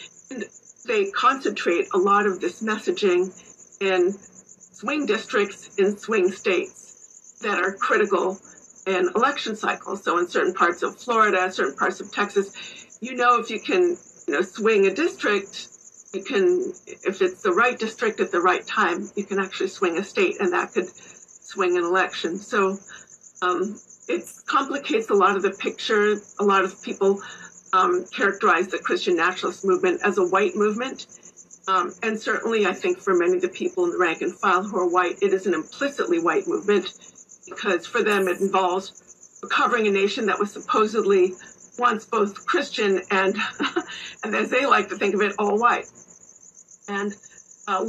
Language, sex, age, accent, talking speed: English, female, 50-69, American, 170 wpm